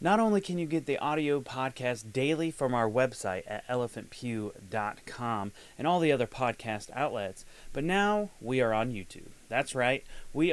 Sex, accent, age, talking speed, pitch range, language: male, American, 30-49, 165 wpm, 110-150 Hz, English